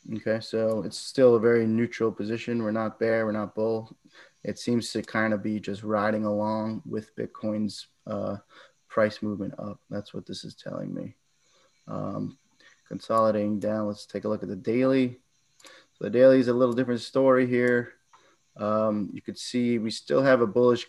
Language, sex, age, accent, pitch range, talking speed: English, male, 20-39, American, 105-120 Hz, 180 wpm